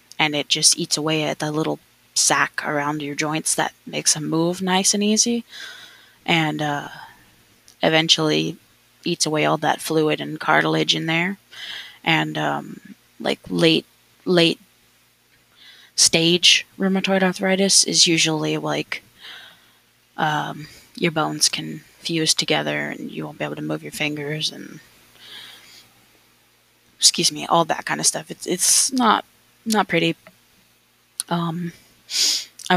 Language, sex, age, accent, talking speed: English, female, 20-39, American, 130 wpm